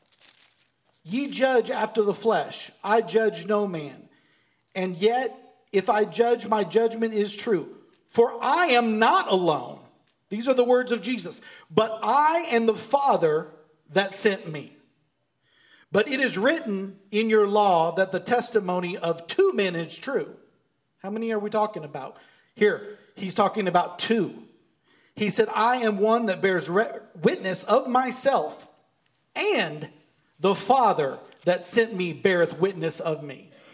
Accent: American